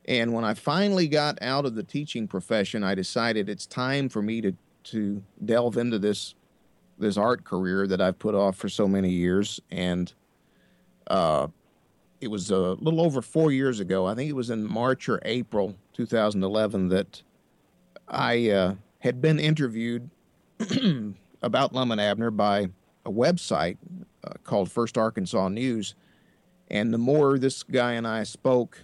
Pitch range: 105-140 Hz